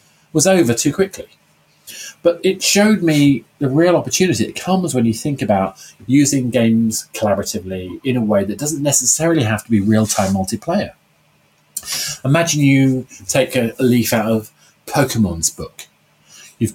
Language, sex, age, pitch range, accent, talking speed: English, male, 30-49, 105-150 Hz, British, 150 wpm